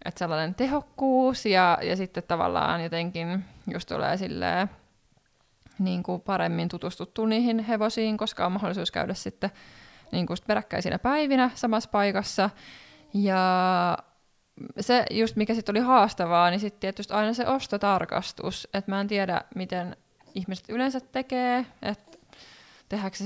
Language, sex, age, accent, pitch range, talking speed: Finnish, female, 20-39, native, 180-215 Hz, 135 wpm